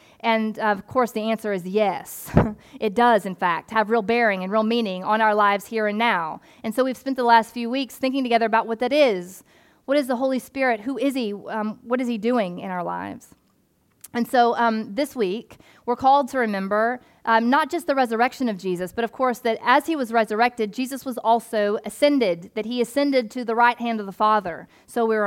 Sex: female